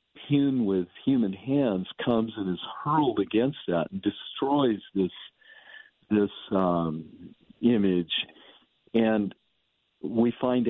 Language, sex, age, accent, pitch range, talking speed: English, male, 50-69, American, 95-125 Hz, 105 wpm